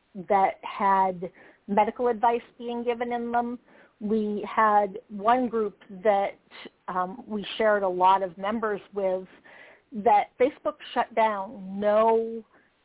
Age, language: 50-69, English